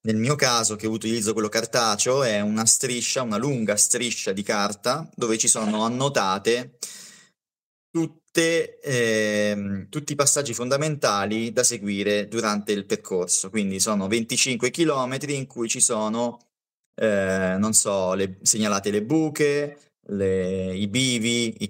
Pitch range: 100-125 Hz